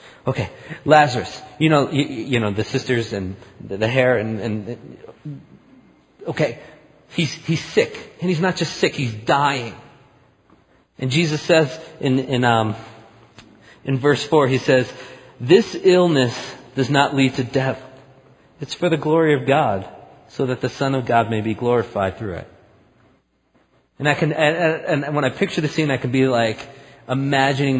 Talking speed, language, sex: 165 wpm, English, male